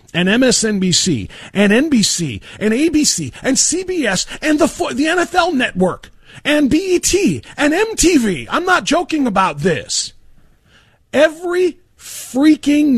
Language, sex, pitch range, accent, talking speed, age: English, male, 175-270 Hz, American, 110 wpm, 40-59